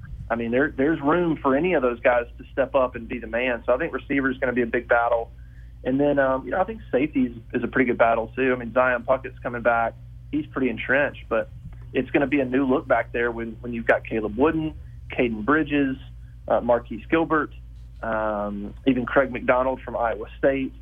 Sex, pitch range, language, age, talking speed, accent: male, 115-130 Hz, English, 30-49, 230 wpm, American